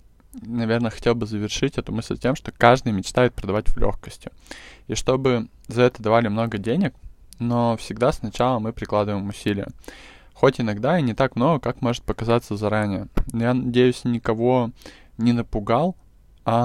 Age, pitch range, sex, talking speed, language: 20-39, 105-125 Hz, male, 155 wpm, Russian